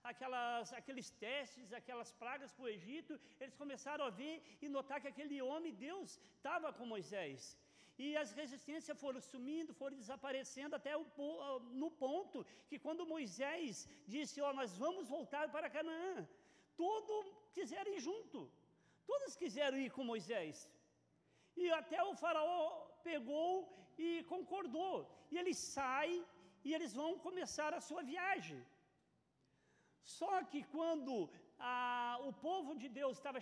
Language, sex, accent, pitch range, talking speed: Portuguese, male, Brazilian, 270-335 Hz, 135 wpm